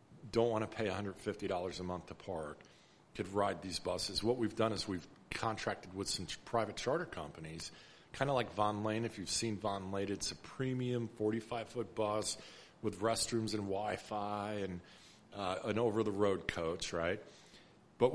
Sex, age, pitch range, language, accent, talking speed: male, 50-69, 95-115 Hz, English, American, 165 wpm